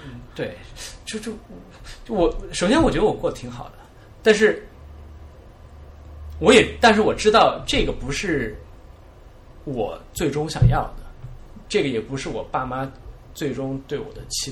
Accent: native